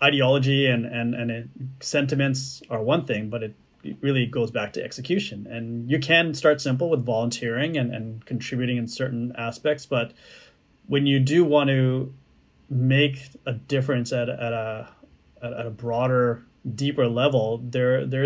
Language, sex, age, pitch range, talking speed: English, male, 30-49, 115-140 Hz, 160 wpm